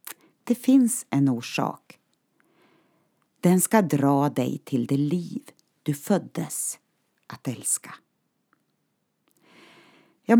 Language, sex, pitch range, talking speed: Swedish, female, 140-235 Hz, 90 wpm